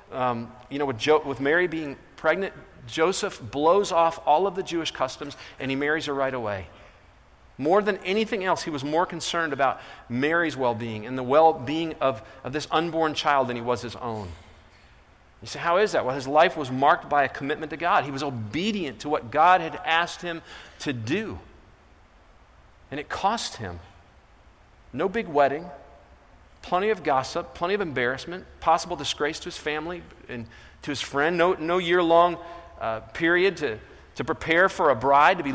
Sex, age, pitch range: male, 40-59, 105-160 Hz